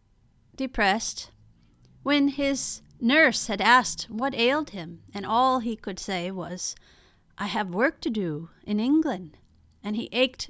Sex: female